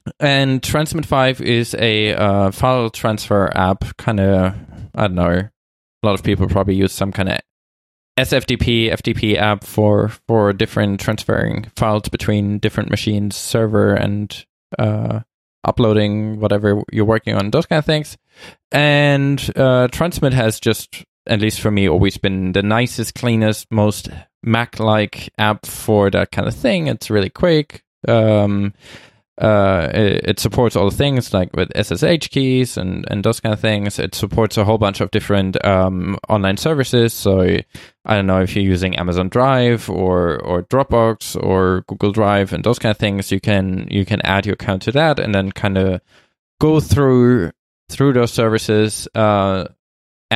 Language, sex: English, male